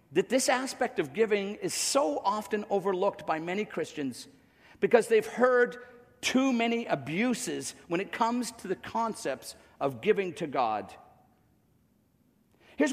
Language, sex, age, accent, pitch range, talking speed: English, male, 50-69, American, 175-245 Hz, 135 wpm